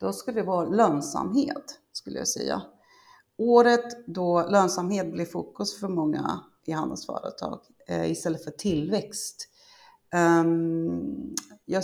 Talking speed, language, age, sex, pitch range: 105 wpm, Swedish, 30-49, female, 160-205 Hz